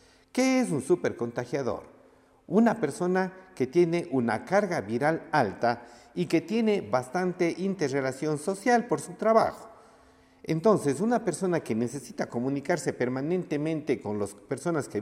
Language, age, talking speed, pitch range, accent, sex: Spanish, 50-69, 130 wpm, 125-175 Hz, Mexican, male